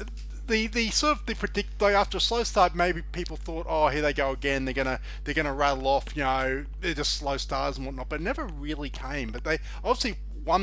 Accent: Australian